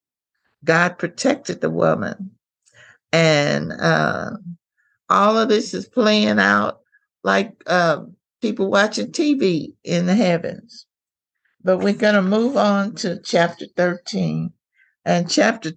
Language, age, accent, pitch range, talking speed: English, 60-79, American, 170-220 Hz, 120 wpm